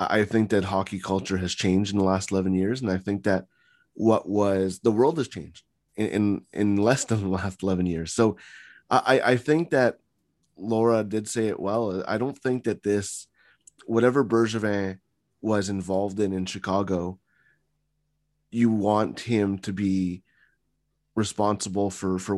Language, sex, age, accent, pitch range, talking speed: English, male, 20-39, American, 95-115 Hz, 165 wpm